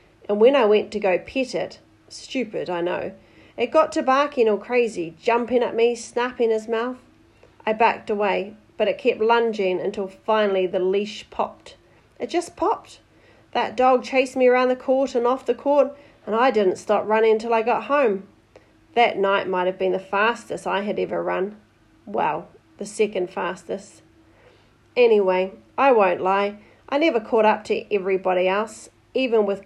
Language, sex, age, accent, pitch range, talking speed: English, female, 40-59, Australian, 195-245 Hz, 175 wpm